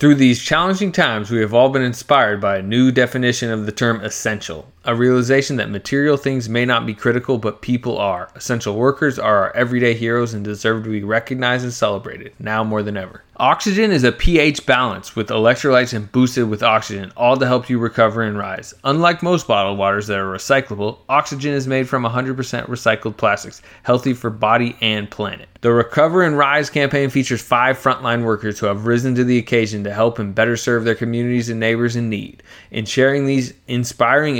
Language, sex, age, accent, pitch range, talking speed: English, male, 20-39, American, 110-130 Hz, 195 wpm